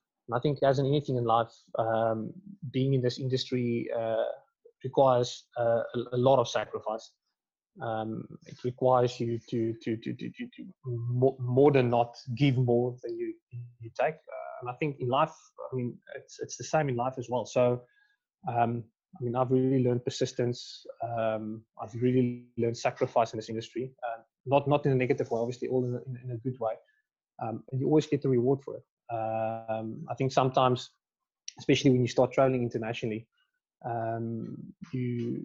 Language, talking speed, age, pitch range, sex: English, 185 wpm, 20-39, 115-135 Hz, male